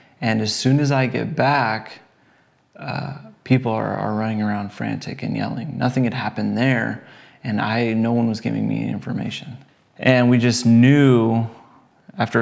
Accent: American